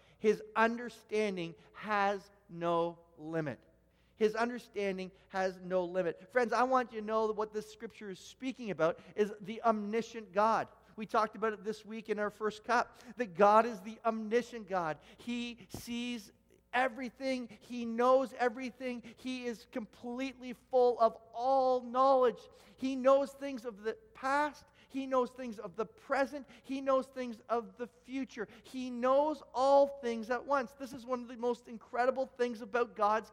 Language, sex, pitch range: English, male, 210-255 Hz